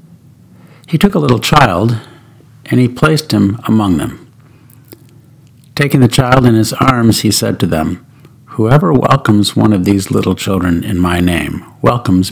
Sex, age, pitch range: male, 50-69, 105-140 Hz